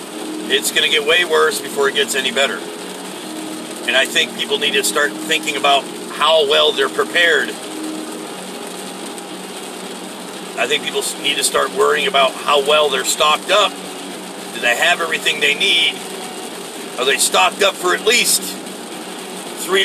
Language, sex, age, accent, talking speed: English, male, 50-69, American, 155 wpm